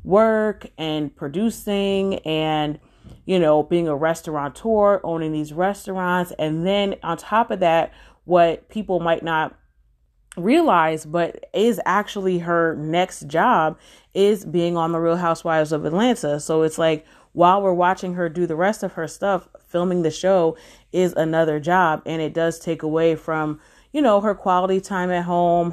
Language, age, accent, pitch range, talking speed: English, 30-49, American, 155-190 Hz, 160 wpm